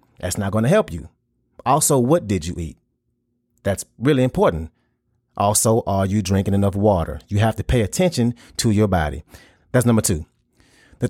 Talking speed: 175 wpm